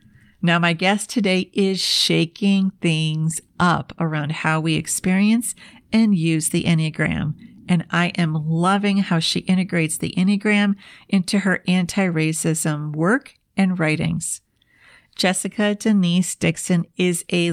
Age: 50-69